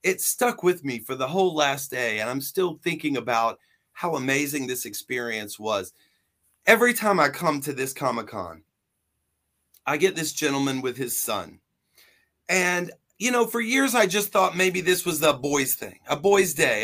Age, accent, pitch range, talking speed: 40-59, American, 140-190 Hz, 180 wpm